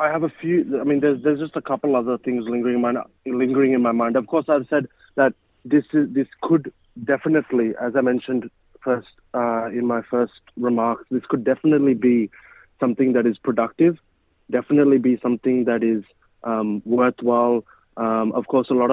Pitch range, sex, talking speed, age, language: 120-140 Hz, male, 190 wpm, 30-49, Malayalam